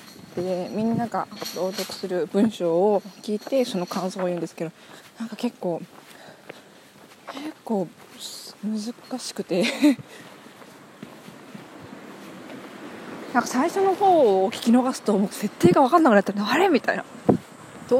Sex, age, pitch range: female, 20-39, 205-290 Hz